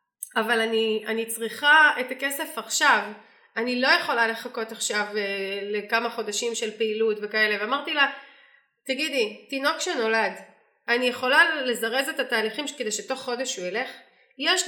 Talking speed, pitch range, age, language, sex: 135 wpm, 245-355 Hz, 30-49, Hebrew, female